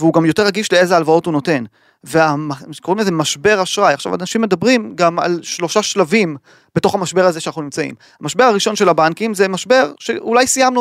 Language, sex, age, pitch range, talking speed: Hebrew, male, 30-49, 160-220 Hz, 185 wpm